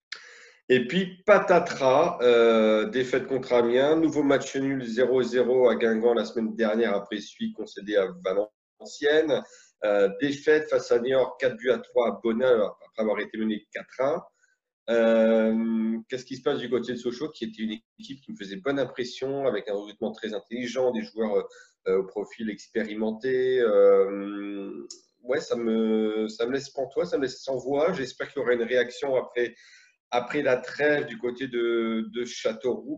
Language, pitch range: French, 110-175 Hz